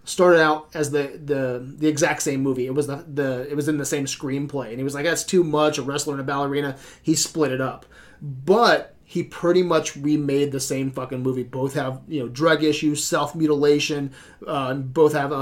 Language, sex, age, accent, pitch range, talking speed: English, male, 30-49, American, 135-155 Hz, 220 wpm